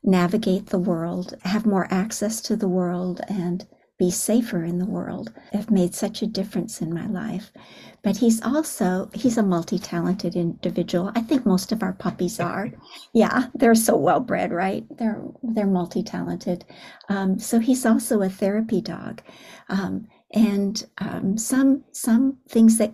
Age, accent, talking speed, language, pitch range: 60-79, American, 155 wpm, English, 185-220 Hz